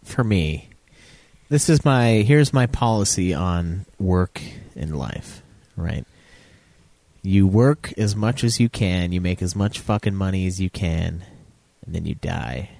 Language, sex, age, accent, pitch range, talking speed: English, male, 30-49, American, 90-120 Hz, 155 wpm